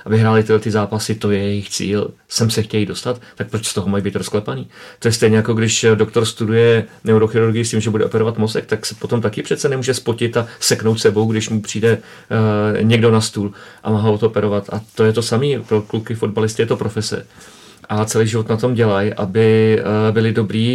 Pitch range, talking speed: 105-115 Hz, 225 wpm